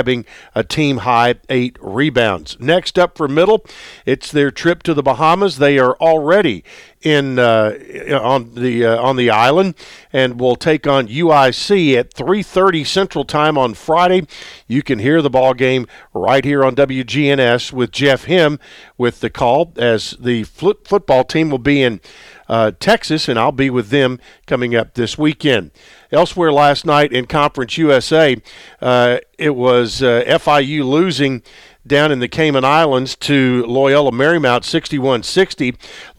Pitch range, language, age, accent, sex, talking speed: 125-155 Hz, English, 50-69, American, male, 155 wpm